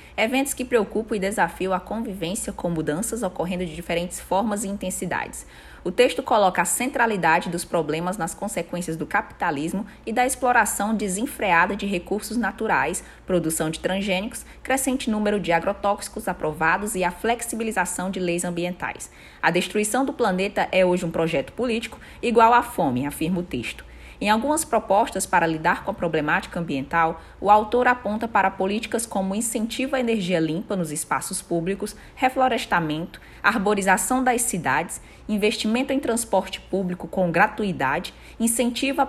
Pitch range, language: 170-220 Hz, Portuguese